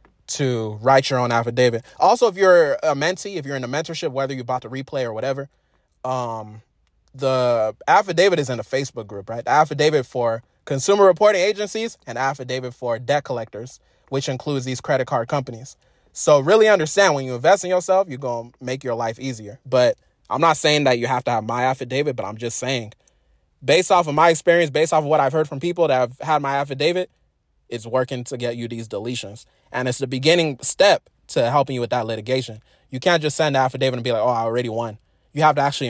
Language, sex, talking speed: English, male, 220 wpm